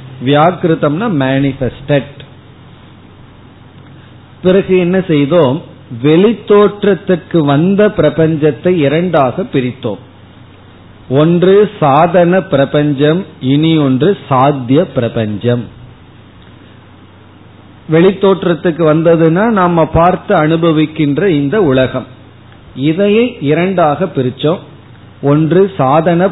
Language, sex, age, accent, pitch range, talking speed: Tamil, male, 40-59, native, 125-175 Hz, 65 wpm